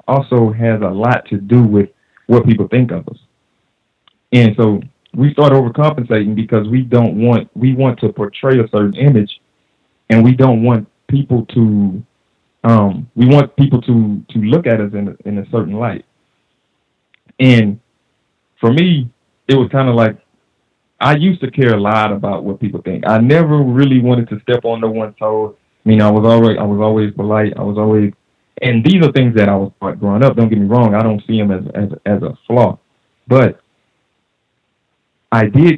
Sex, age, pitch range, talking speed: male, 30-49, 105-125 Hz, 190 wpm